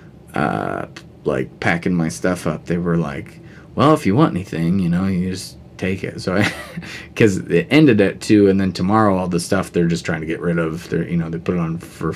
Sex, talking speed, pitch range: male, 230 wpm, 85-110 Hz